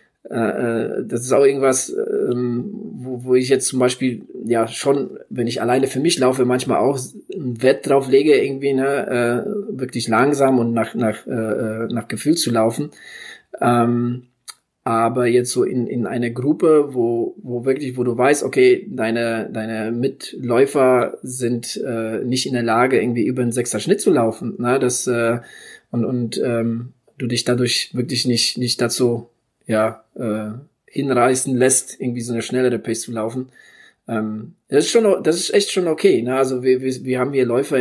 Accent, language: German, German